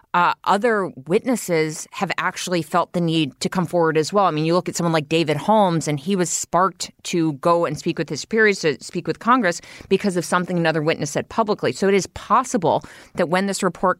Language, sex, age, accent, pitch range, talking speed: English, female, 30-49, American, 155-185 Hz, 225 wpm